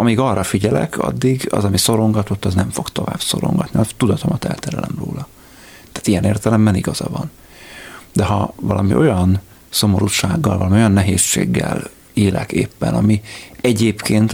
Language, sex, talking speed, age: Hungarian, male, 140 wpm, 30-49